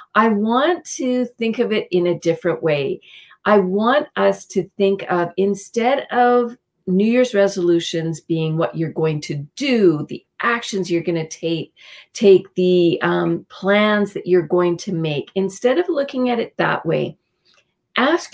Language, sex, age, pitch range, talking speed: English, female, 40-59, 170-225 Hz, 165 wpm